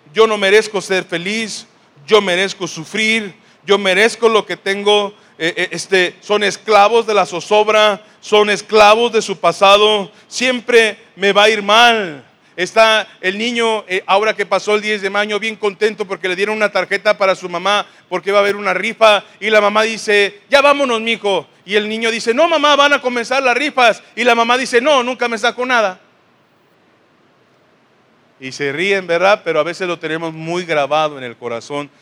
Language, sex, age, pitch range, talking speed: Spanish, male, 40-59, 170-215 Hz, 185 wpm